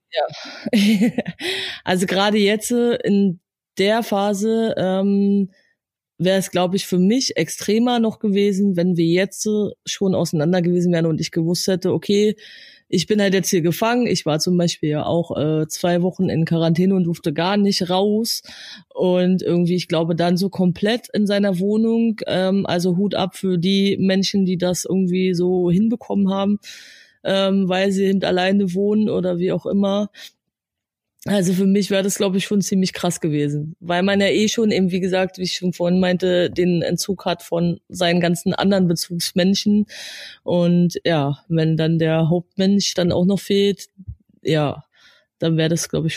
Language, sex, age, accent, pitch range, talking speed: German, female, 20-39, German, 175-200 Hz, 170 wpm